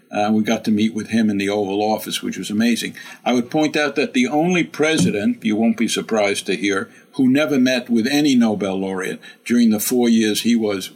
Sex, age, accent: male, 60-79, American